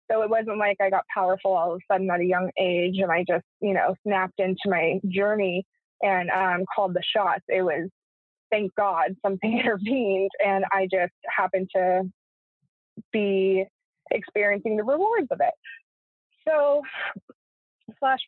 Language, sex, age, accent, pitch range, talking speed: English, female, 20-39, American, 190-220 Hz, 160 wpm